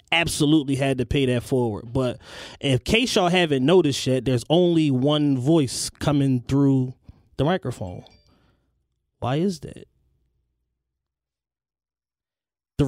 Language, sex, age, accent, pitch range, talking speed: English, male, 20-39, American, 130-160 Hz, 115 wpm